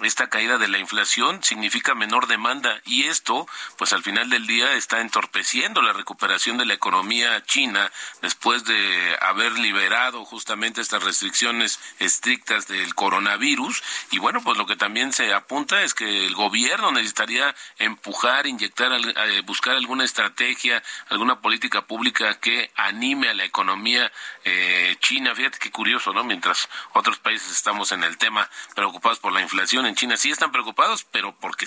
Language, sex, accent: Spanish, male, Mexican